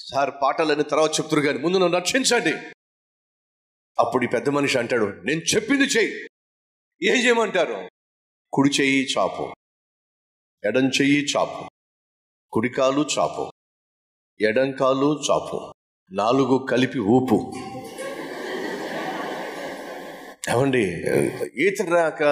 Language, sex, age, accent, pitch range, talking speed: Telugu, male, 30-49, native, 120-155 Hz, 85 wpm